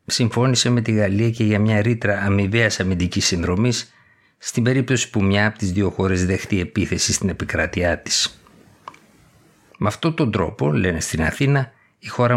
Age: 60-79